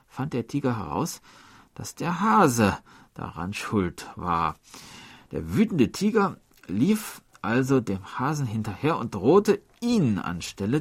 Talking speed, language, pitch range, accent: 120 wpm, German, 115-195 Hz, German